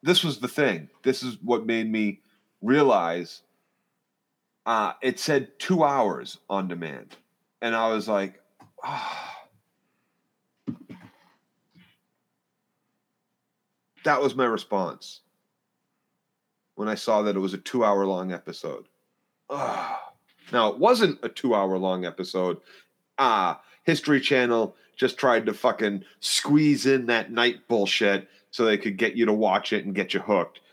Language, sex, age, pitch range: English, male, 30-49, 95-135 Hz